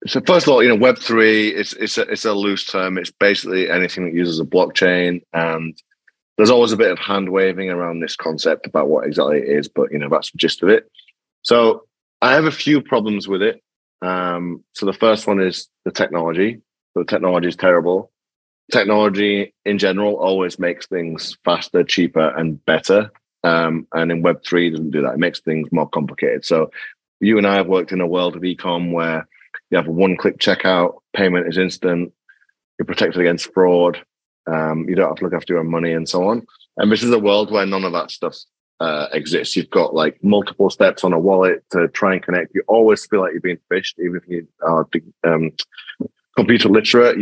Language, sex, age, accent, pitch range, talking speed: English, male, 30-49, British, 85-100 Hz, 205 wpm